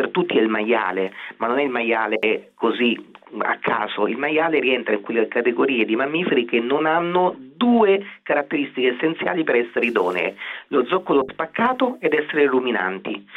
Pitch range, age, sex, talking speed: 115-155 Hz, 40-59, male, 160 wpm